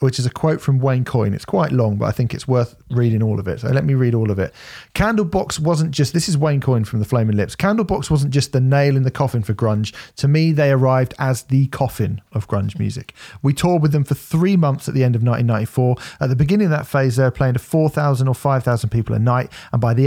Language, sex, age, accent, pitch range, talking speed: English, male, 40-59, British, 115-140 Hz, 265 wpm